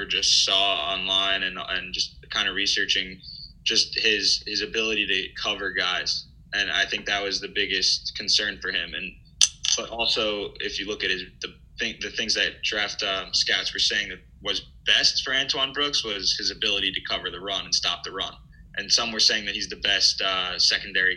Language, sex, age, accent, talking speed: English, male, 20-39, American, 200 wpm